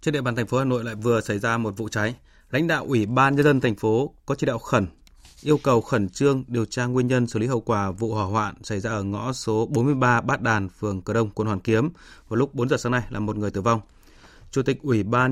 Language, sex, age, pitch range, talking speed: Vietnamese, male, 20-39, 105-125 Hz, 275 wpm